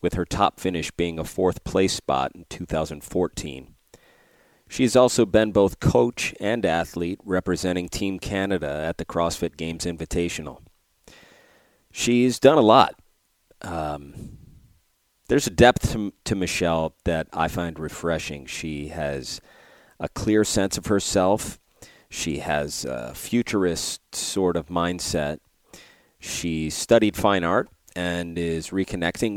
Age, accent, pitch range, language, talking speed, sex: 40-59, American, 80-100 Hz, English, 125 wpm, male